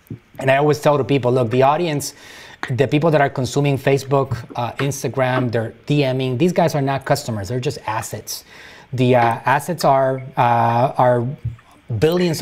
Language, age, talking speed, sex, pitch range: English, 30-49, 165 wpm, male, 125-155 Hz